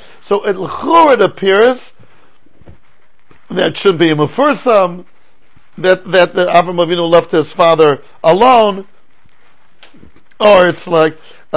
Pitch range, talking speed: 170-220 Hz, 115 wpm